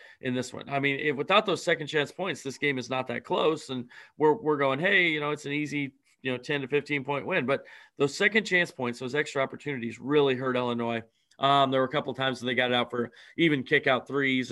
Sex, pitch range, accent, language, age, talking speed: male, 125-155 Hz, American, English, 30-49, 250 wpm